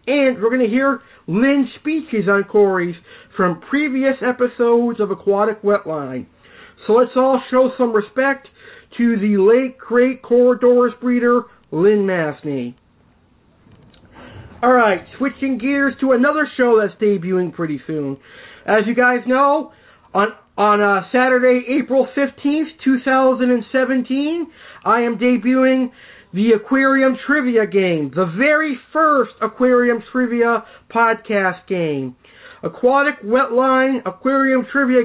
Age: 50-69